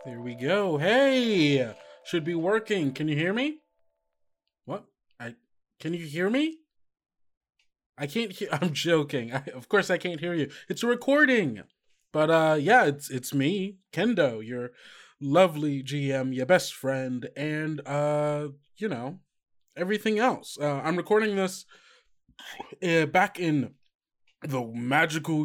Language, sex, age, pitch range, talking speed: English, male, 20-39, 135-200 Hz, 140 wpm